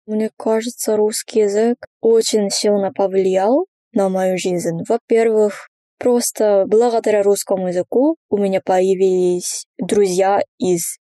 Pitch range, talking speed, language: 190-230 Hz, 110 wpm, Russian